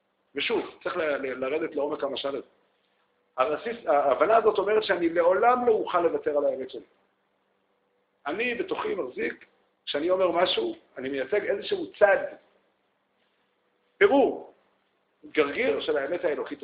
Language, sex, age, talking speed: Hebrew, male, 50-69, 125 wpm